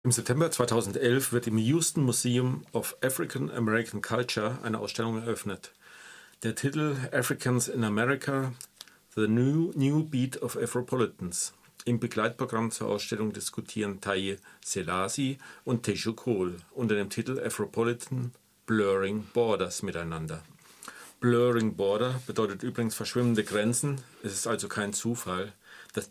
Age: 40-59